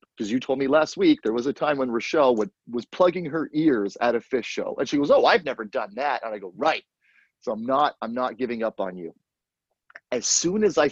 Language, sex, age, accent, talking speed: English, male, 30-49, American, 255 wpm